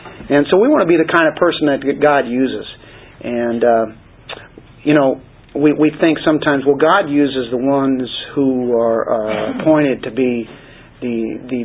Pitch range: 120-150 Hz